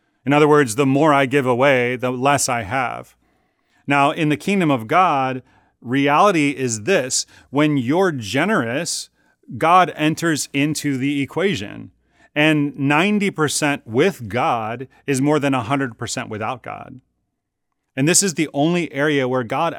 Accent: American